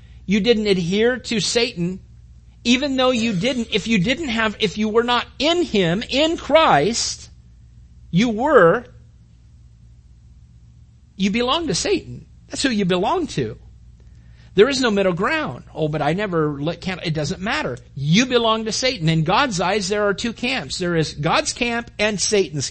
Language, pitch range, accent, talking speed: English, 150-240 Hz, American, 165 wpm